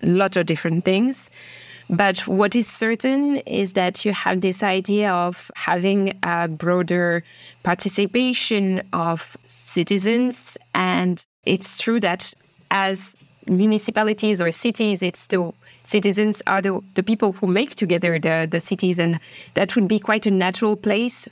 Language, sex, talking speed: English, female, 140 wpm